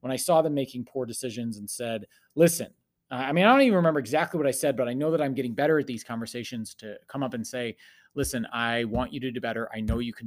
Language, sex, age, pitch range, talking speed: English, male, 30-49, 120-170 Hz, 270 wpm